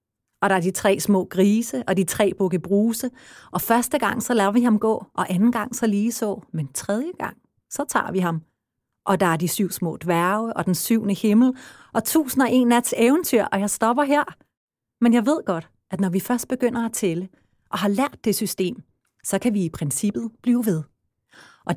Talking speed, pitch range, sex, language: 215 wpm, 180-235 Hz, female, Danish